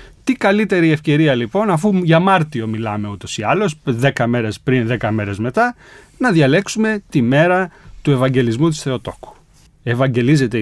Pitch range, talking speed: 120-170 Hz, 145 wpm